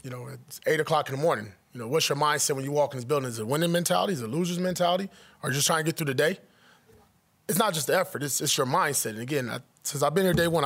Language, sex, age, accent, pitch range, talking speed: English, male, 30-49, American, 135-170 Hz, 320 wpm